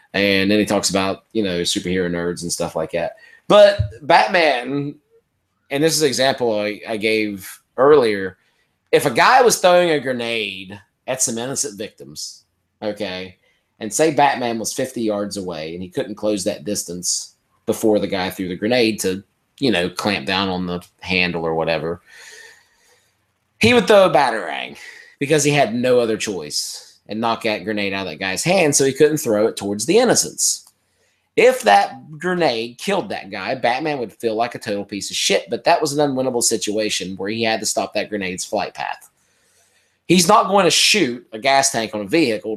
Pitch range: 100-145 Hz